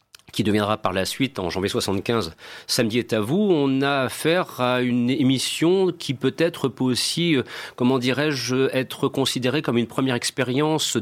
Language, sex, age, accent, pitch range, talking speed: French, male, 40-59, French, 110-140 Hz, 170 wpm